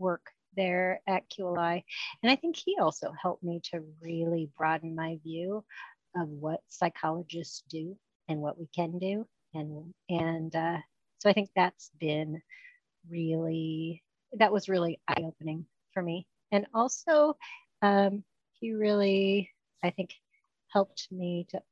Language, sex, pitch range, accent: English, female, 165-205 Hz, American